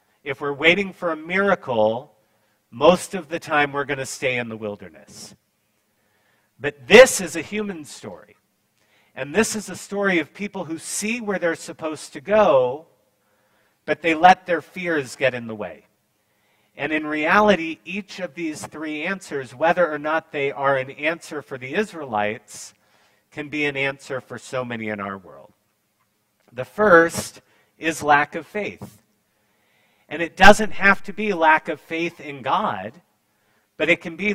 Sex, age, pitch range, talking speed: male, 40-59, 105-170 Hz, 165 wpm